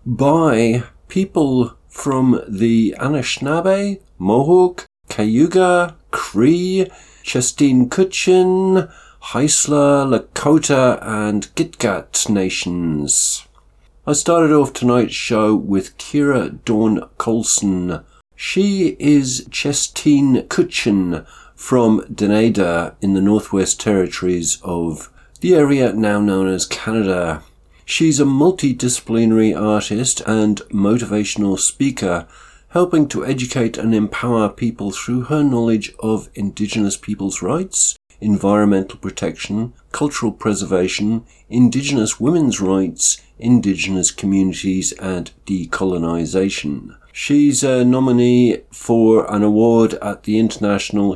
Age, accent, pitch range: 50-69, British, 95-135 Hz